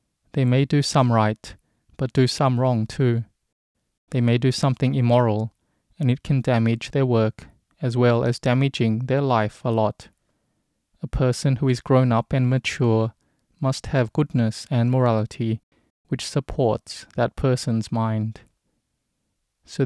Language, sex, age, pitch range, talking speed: English, male, 20-39, 115-135 Hz, 145 wpm